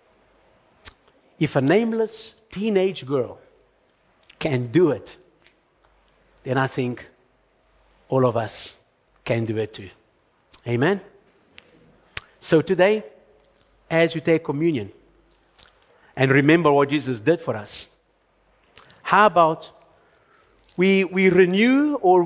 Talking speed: 100 wpm